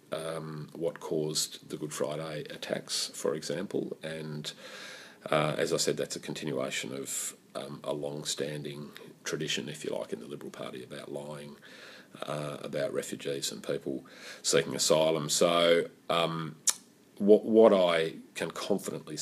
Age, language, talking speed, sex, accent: 40-59, English, 140 wpm, male, Australian